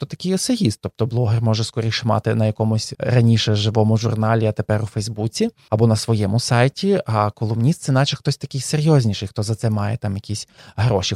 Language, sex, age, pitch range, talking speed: Ukrainian, male, 20-39, 110-140 Hz, 190 wpm